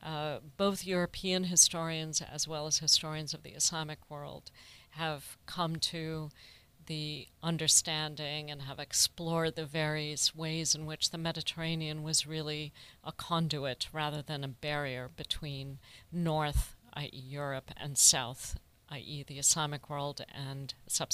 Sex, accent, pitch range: female, American, 140-165 Hz